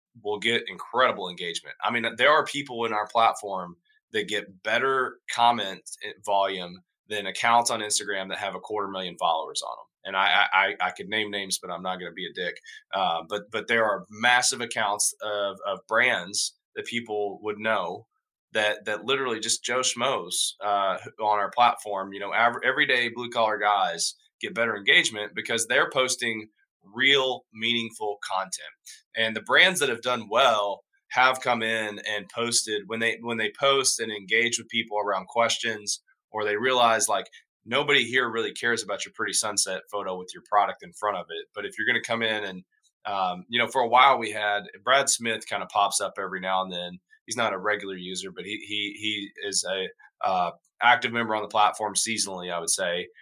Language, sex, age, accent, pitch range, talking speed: English, male, 20-39, American, 105-120 Hz, 195 wpm